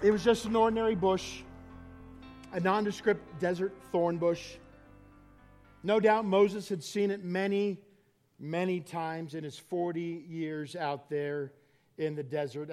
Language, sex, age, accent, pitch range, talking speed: English, male, 40-59, American, 145-190 Hz, 135 wpm